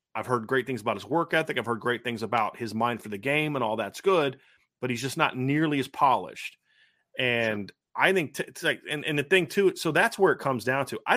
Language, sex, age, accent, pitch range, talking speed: English, male, 40-59, American, 120-145 Hz, 260 wpm